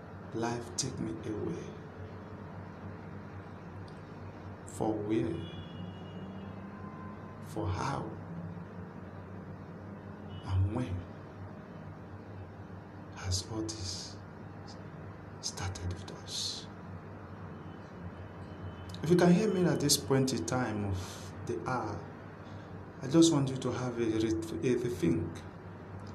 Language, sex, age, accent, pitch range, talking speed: English, male, 50-69, Nigerian, 90-120 Hz, 85 wpm